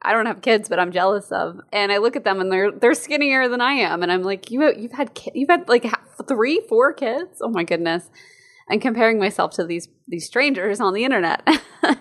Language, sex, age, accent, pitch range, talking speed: English, female, 20-39, American, 170-230 Hz, 225 wpm